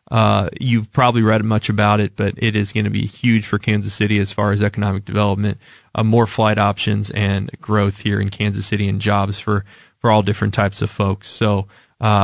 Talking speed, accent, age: 210 wpm, American, 20-39